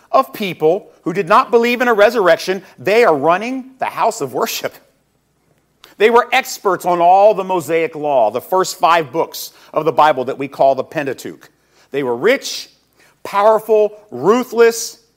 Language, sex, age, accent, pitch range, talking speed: English, male, 50-69, American, 160-215 Hz, 160 wpm